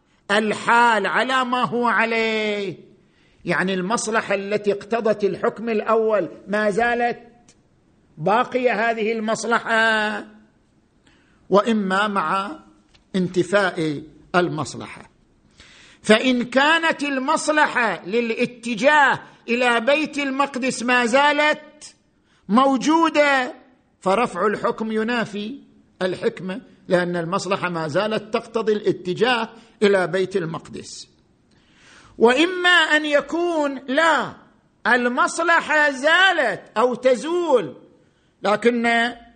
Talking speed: 80 wpm